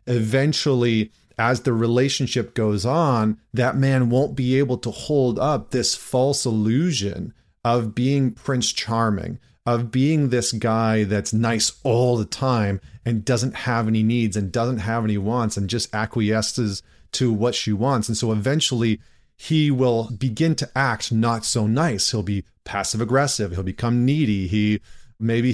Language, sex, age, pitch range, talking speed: English, male, 30-49, 110-130 Hz, 155 wpm